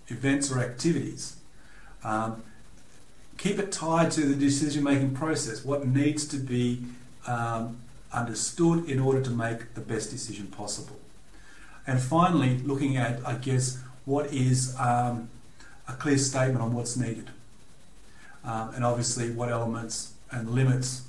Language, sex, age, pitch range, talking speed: English, male, 40-59, 115-140 Hz, 135 wpm